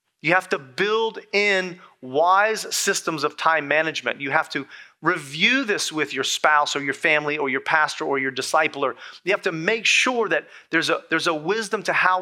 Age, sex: 30-49, male